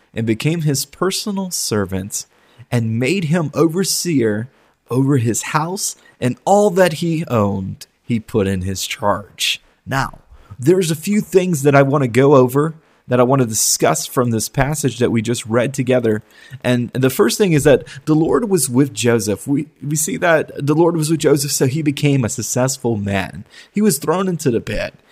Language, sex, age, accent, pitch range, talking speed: English, male, 30-49, American, 120-170 Hz, 185 wpm